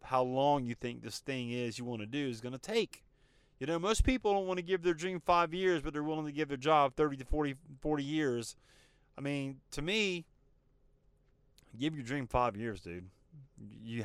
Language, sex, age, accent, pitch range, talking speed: English, male, 30-49, American, 120-170 Hz, 215 wpm